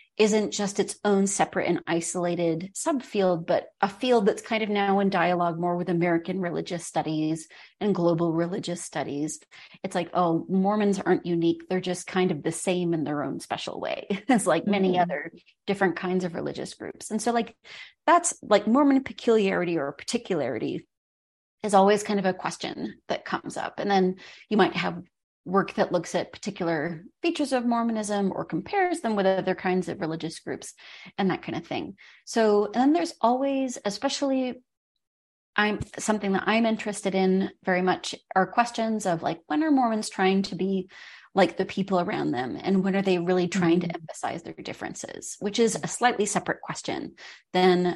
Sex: female